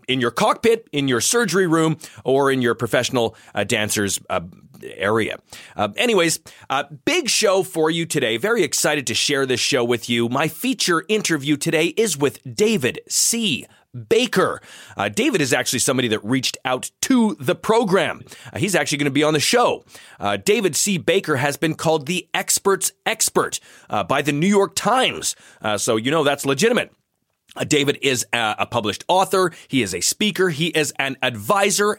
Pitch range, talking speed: 125-180 Hz, 180 wpm